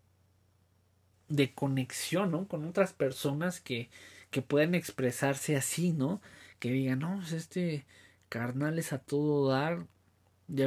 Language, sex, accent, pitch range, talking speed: Spanish, male, Mexican, 125-150 Hz, 125 wpm